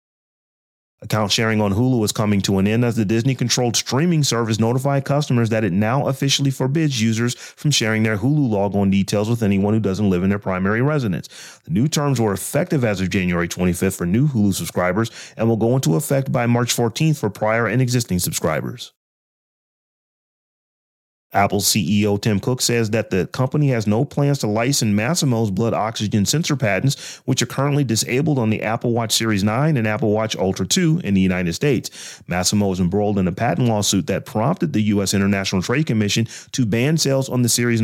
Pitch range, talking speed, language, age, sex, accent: 100-130 Hz, 190 wpm, English, 30-49, male, American